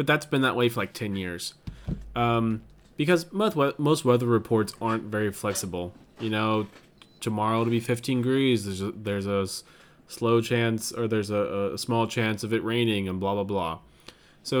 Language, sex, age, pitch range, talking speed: English, male, 20-39, 105-140 Hz, 185 wpm